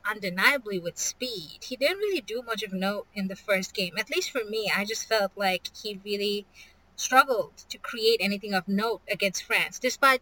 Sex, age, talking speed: female, 20-39, 195 wpm